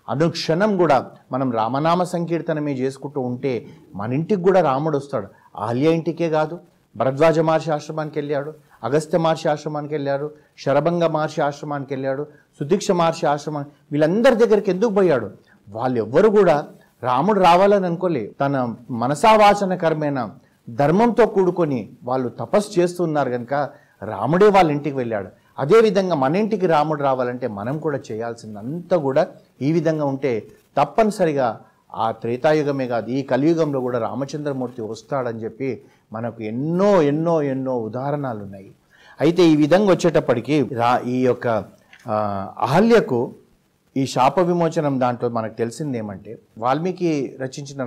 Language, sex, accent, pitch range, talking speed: Telugu, male, native, 125-165 Hz, 120 wpm